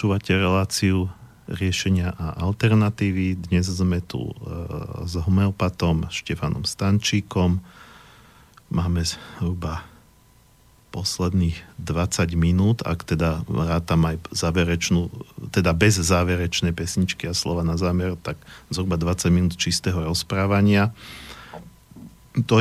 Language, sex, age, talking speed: Slovak, male, 40-59, 95 wpm